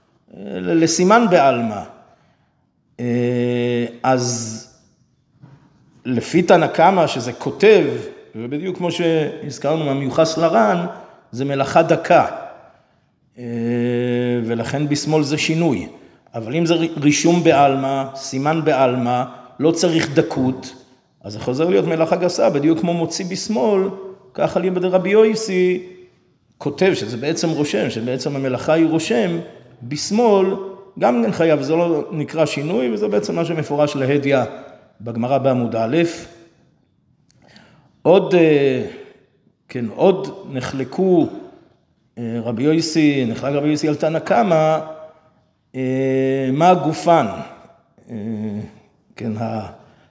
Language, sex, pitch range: Hebrew, male, 130-175 Hz